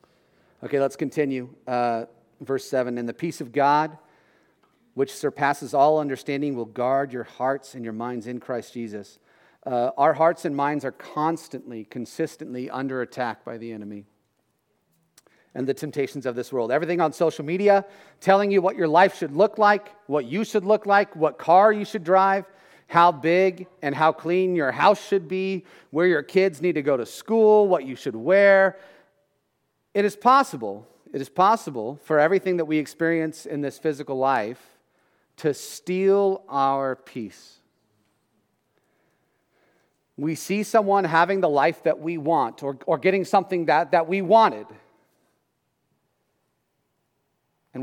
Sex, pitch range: male, 135-190 Hz